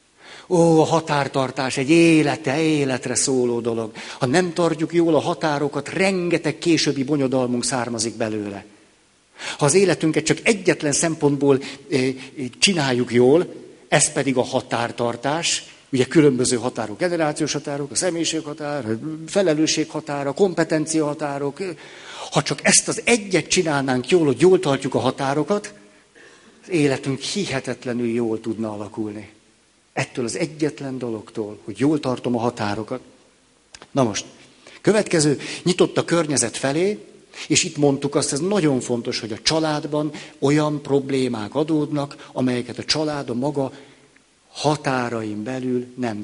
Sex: male